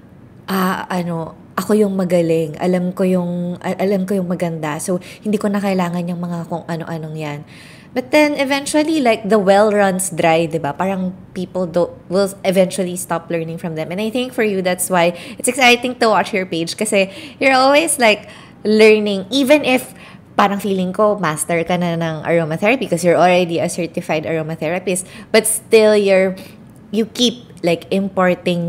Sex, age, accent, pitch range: female, 20-39, native, 170-215 Hz